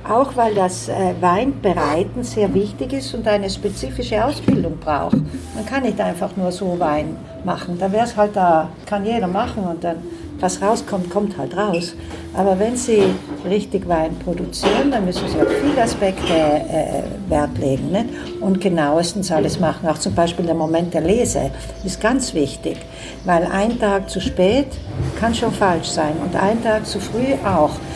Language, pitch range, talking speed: German, 170-225 Hz, 170 wpm